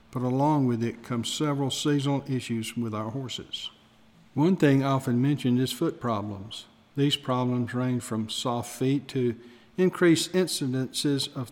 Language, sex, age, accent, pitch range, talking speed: English, male, 50-69, American, 120-145 Hz, 145 wpm